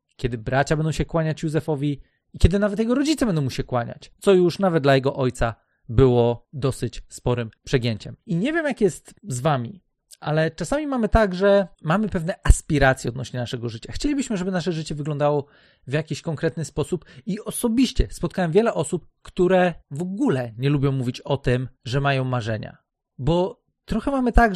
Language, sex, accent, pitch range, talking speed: Polish, male, native, 140-185 Hz, 175 wpm